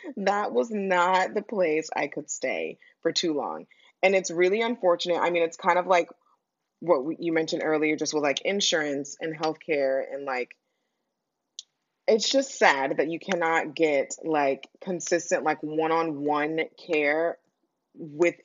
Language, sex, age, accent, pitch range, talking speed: English, female, 20-39, American, 155-185 Hz, 150 wpm